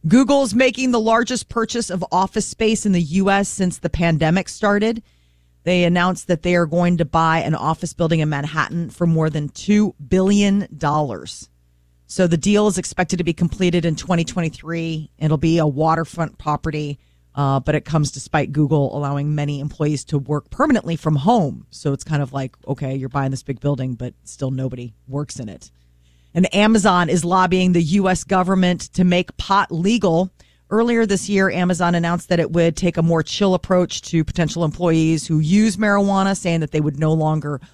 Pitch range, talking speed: 145-185 Hz, 185 wpm